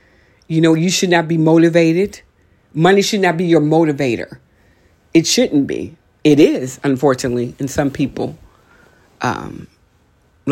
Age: 50-69